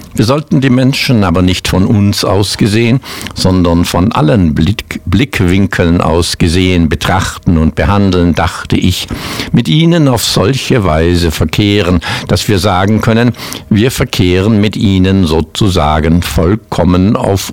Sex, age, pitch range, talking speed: male, 60-79, 85-105 Hz, 130 wpm